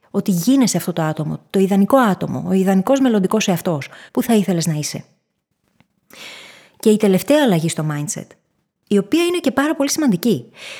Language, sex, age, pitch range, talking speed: Greek, female, 20-39, 180-255 Hz, 165 wpm